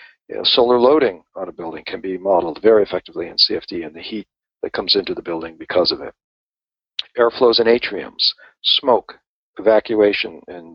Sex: male